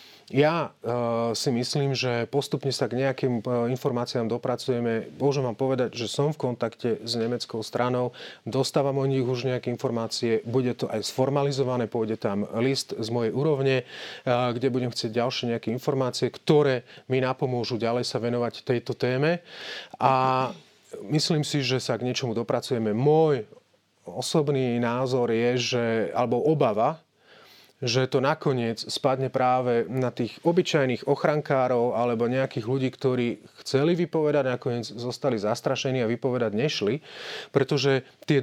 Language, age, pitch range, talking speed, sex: Slovak, 30-49, 120-140 Hz, 135 wpm, male